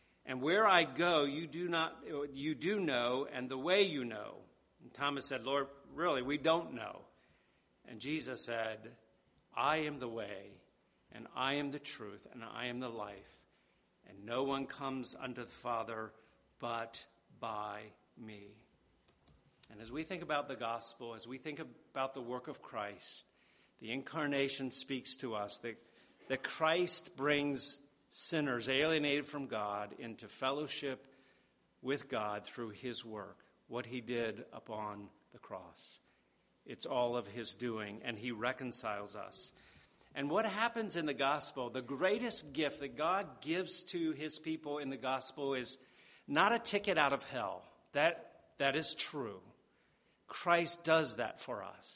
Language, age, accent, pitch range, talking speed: English, 50-69, American, 115-150 Hz, 155 wpm